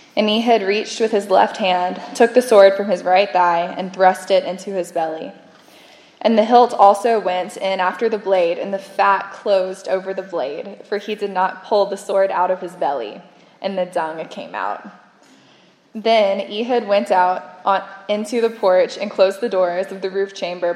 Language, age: English, 10-29